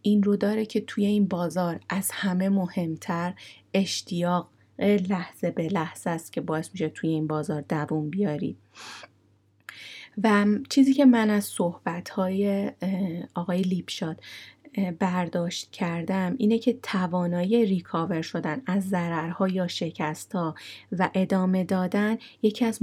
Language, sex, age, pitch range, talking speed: Persian, female, 30-49, 165-195 Hz, 125 wpm